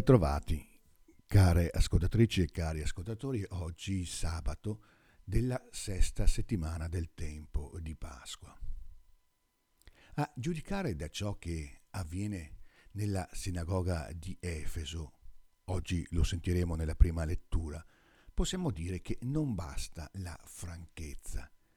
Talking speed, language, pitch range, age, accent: 105 wpm, Italian, 85-115 Hz, 60-79, native